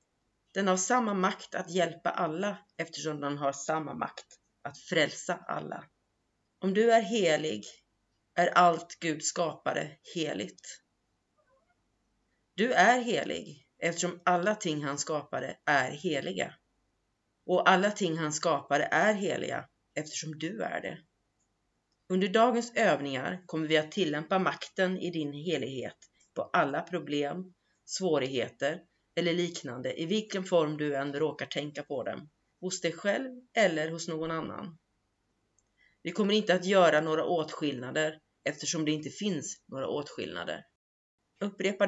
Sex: female